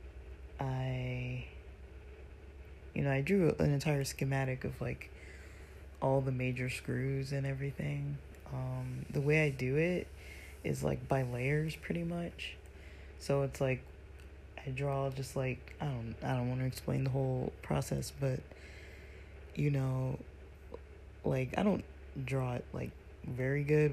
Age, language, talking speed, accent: 20-39, English, 140 wpm, American